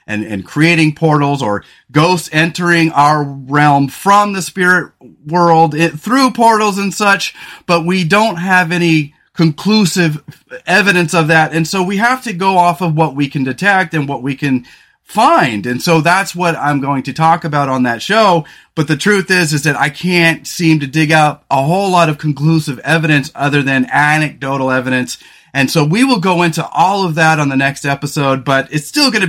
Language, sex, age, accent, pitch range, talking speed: English, male, 30-49, American, 145-180 Hz, 195 wpm